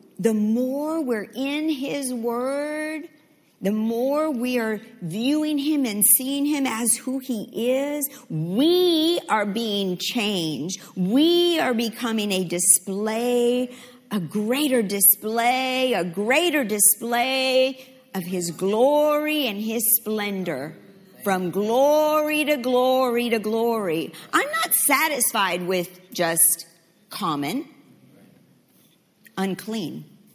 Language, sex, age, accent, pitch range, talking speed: English, female, 50-69, American, 185-260 Hz, 105 wpm